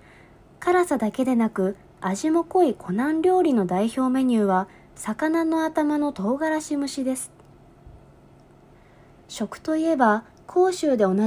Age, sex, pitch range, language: 20-39, female, 210-310 Hz, Japanese